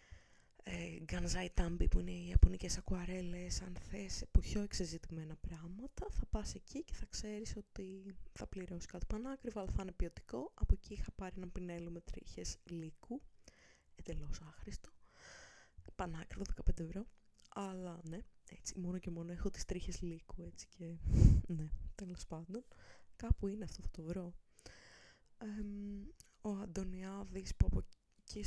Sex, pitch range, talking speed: female, 170-210 Hz, 145 wpm